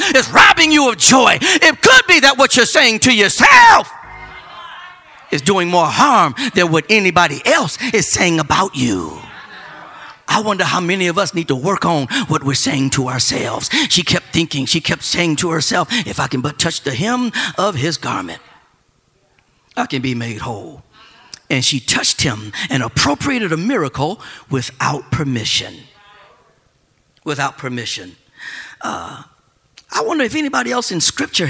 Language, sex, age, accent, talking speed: English, male, 50-69, American, 160 wpm